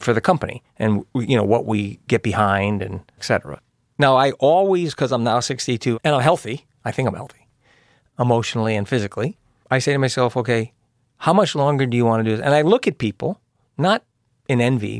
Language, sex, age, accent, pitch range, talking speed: English, male, 40-59, American, 120-150 Hz, 205 wpm